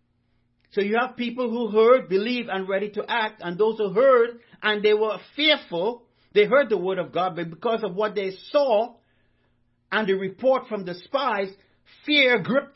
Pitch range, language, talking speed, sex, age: 155-235 Hz, English, 185 wpm, male, 60-79